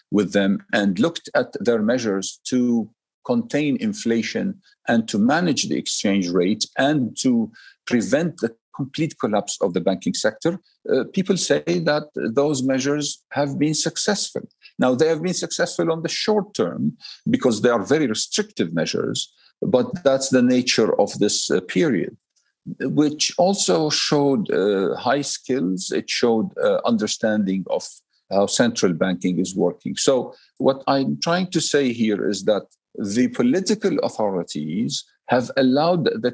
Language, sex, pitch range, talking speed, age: English, male, 115-180 Hz, 145 wpm, 50-69